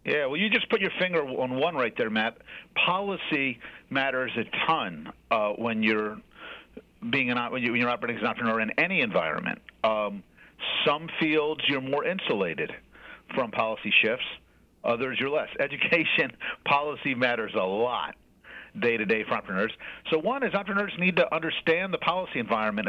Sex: male